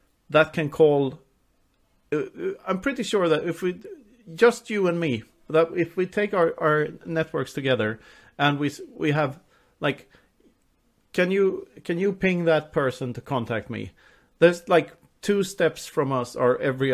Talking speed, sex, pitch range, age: 155 wpm, male, 120-155 Hz, 40-59